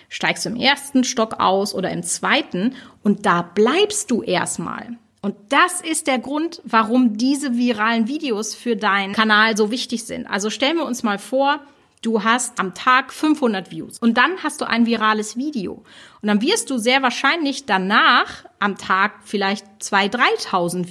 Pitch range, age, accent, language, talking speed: 200-250 Hz, 30-49, German, German, 170 wpm